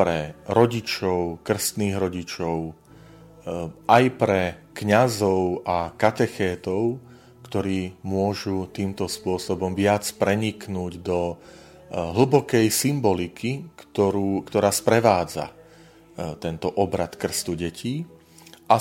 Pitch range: 90-110 Hz